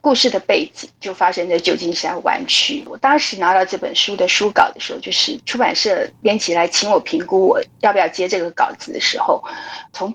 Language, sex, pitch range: Chinese, female, 195-305 Hz